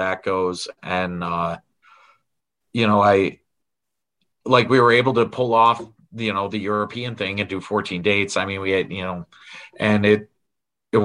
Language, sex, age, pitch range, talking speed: English, male, 40-59, 95-115 Hz, 175 wpm